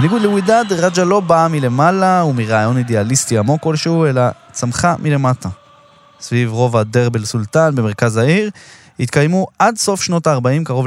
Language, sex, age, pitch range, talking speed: Hebrew, male, 20-39, 115-150 Hz, 140 wpm